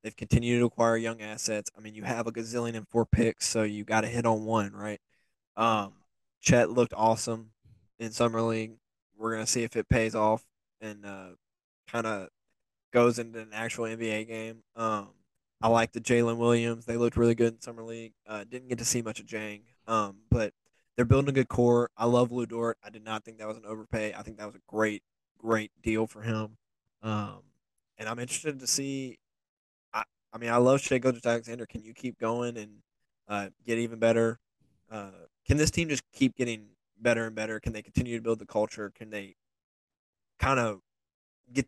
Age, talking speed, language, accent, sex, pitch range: 20-39, 200 wpm, English, American, male, 105-120 Hz